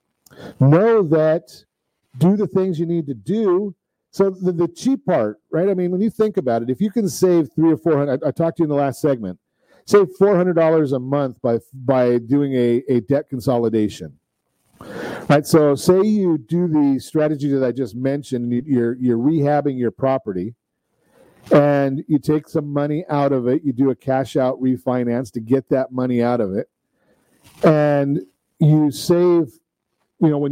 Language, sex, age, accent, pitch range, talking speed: English, male, 50-69, American, 130-170 Hz, 185 wpm